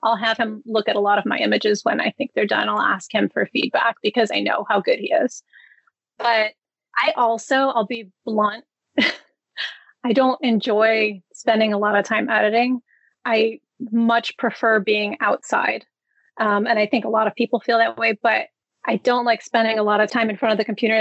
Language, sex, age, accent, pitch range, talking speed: English, female, 30-49, American, 215-240 Hz, 205 wpm